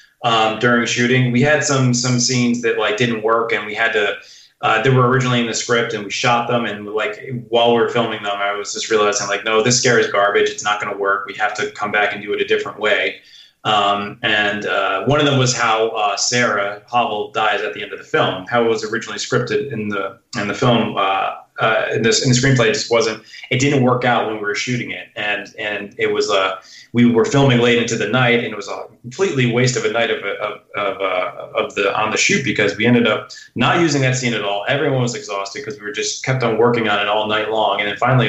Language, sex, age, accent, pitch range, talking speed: English, male, 20-39, American, 110-130 Hz, 260 wpm